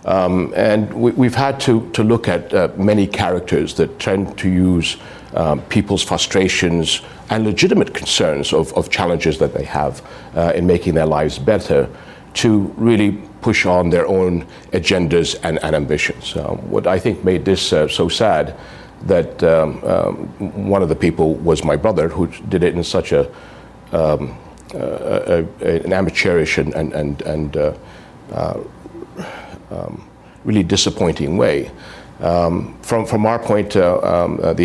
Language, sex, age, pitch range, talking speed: English, male, 60-79, 85-105 Hz, 160 wpm